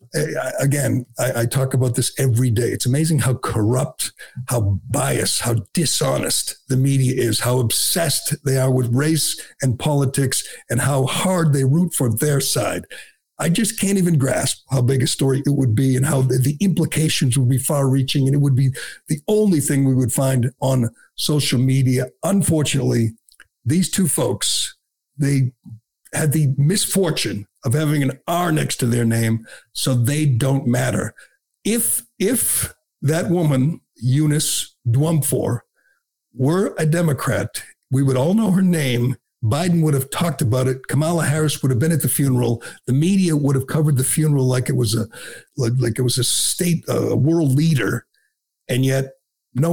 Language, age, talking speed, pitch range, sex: English, 60-79, 165 wpm, 125-155 Hz, male